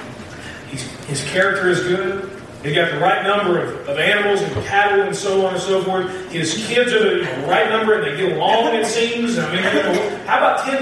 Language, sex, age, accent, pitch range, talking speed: English, male, 40-59, American, 175-240 Hz, 205 wpm